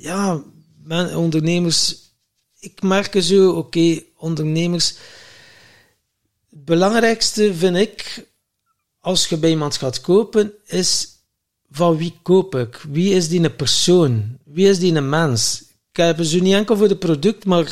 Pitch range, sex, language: 150-190 Hz, male, Dutch